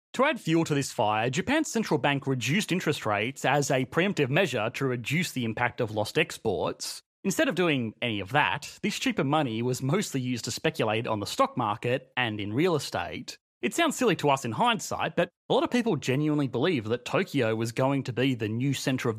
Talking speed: 215 wpm